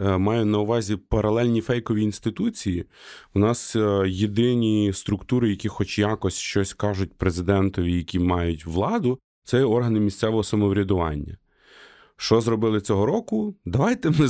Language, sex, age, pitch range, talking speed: Ukrainian, male, 20-39, 95-120 Hz, 120 wpm